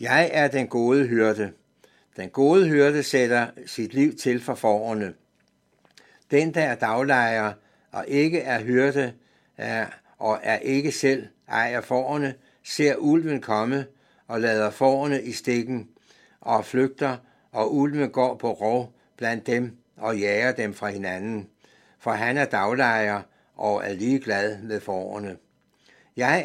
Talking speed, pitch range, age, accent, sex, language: 135 wpm, 110-140 Hz, 60-79, native, male, Danish